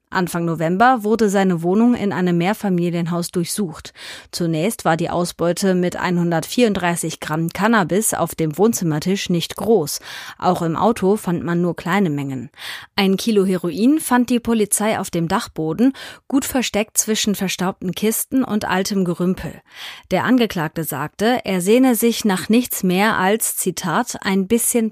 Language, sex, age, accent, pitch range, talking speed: German, female, 30-49, German, 170-215 Hz, 145 wpm